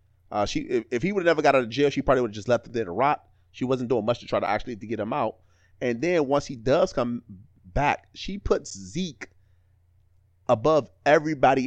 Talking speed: 225 wpm